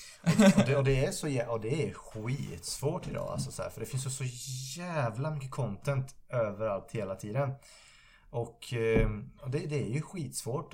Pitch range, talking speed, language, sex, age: 100-135 Hz, 180 wpm, Swedish, male, 20-39